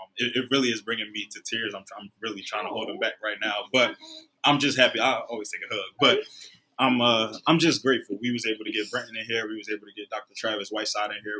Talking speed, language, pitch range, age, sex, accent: 265 wpm, English, 105-120 Hz, 20-39, male, American